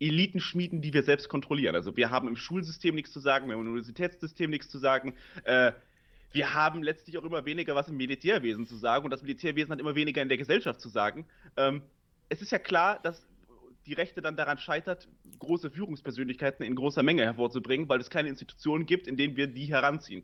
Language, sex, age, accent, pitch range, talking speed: German, male, 30-49, German, 135-170 Hz, 195 wpm